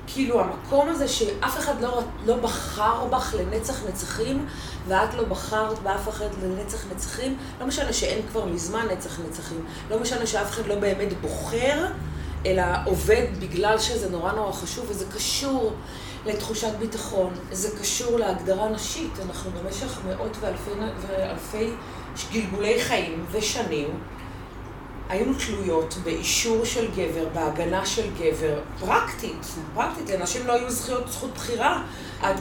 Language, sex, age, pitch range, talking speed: Hebrew, female, 30-49, 185-235 Hz, 135 wpm